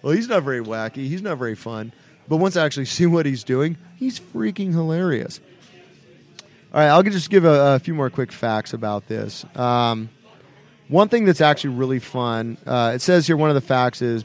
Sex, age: male, 30-49